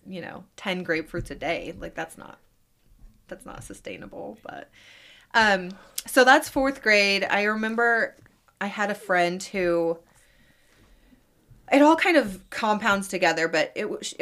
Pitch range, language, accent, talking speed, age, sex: 165-210 Hz, English, American, 140 wpm, 20-39, female